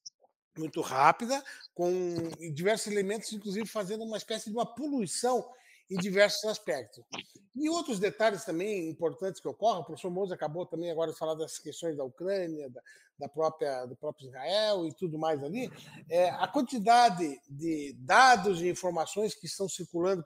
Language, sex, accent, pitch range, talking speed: Portuguese, male, Brazilian, 165-235 Hz, 155 wpm